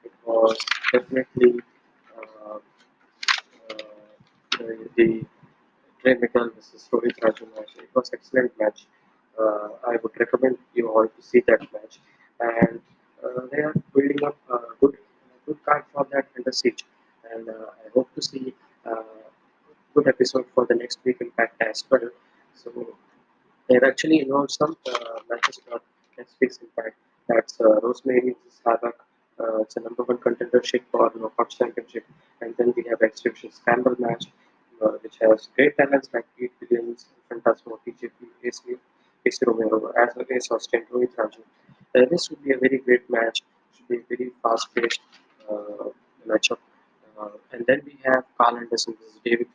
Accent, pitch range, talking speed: Indian, 115-130 Hz, 170 wpm